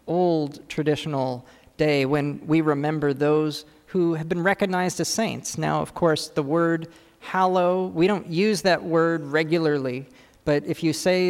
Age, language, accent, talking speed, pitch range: 40-59, English, American, 155 wpm, 140-170 Hz